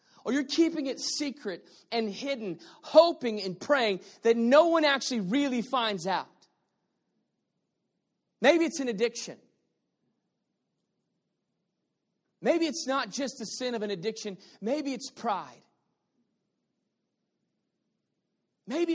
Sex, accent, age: male, American, 30-49